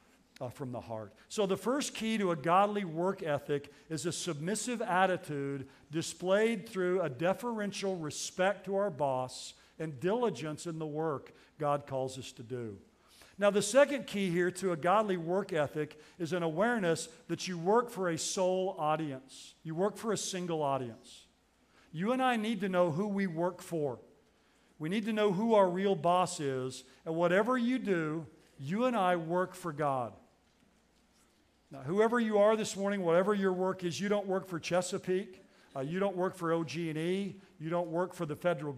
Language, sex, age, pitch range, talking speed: English, male, 50-69, 155-195 Hz, 180 wpm